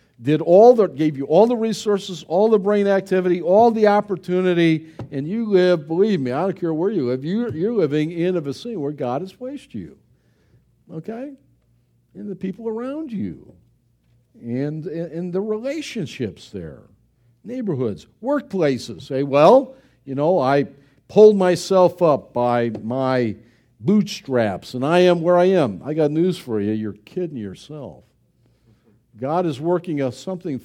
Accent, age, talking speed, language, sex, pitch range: American, 50-69, 160 wpm, English, male, 130-215 Hz